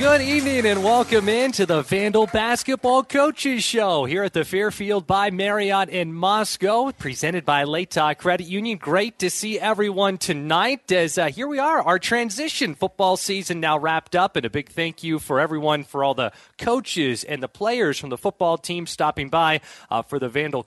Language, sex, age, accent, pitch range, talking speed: English, male, 30-49, American, 145-205 Hz, 190 wpm